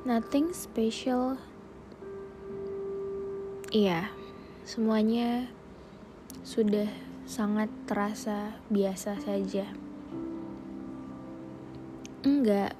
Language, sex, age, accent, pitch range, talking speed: Indonesian, female, 20-39, native, 190-215 Hz, 50 wpm